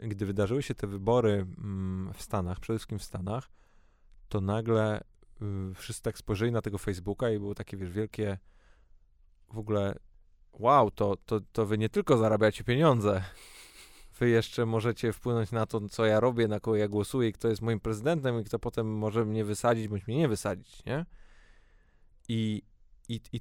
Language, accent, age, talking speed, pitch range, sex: Polish, native, 20-39, 160 wpm, 100-115 Hz, male